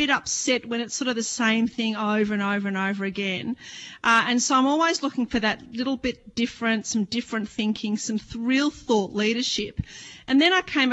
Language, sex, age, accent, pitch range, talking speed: English, female, 40-59, Australian, 215-275 Hz, 205 wpm